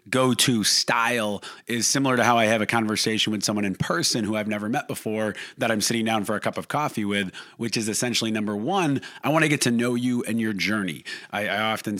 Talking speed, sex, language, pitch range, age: 240 wpm, male, English, 105-125 Hz, 30-49